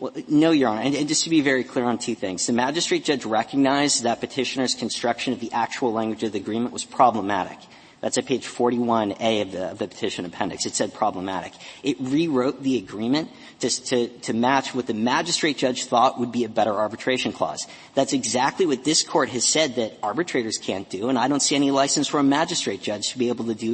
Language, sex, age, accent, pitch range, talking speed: English, male, 40-59, American, 115-145 Hz, 215 wpm